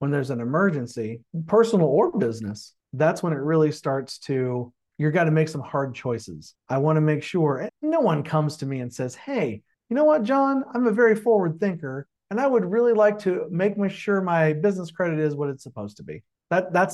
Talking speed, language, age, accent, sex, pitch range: 215 wpm, English, 40-59, American, male, 130-185 Hz